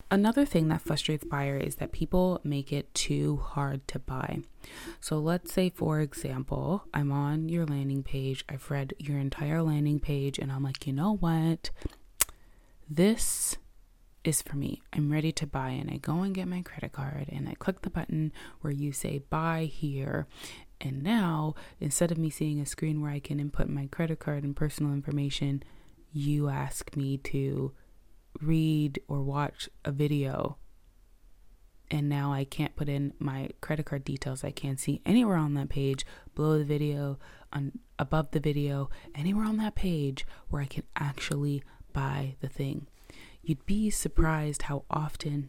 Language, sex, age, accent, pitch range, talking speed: English, female, 20-39, American, 140-160 Hz, 170 wpm